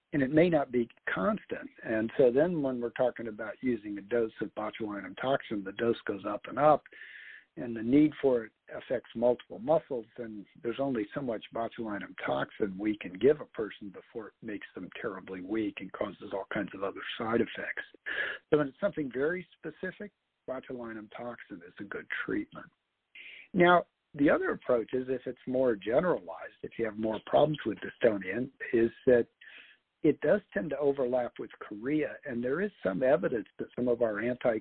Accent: American